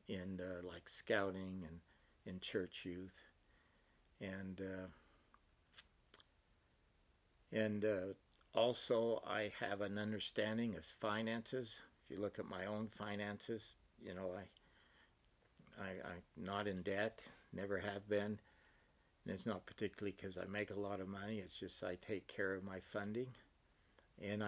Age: 60-79